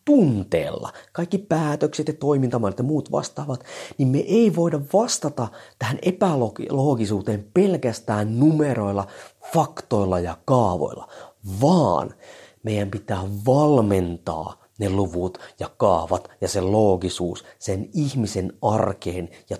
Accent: native